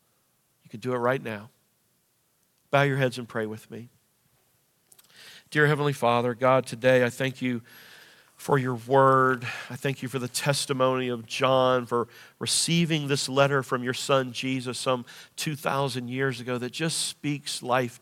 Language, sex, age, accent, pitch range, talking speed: English, male, 40-59, American, 125-145 Hz, 155 wpm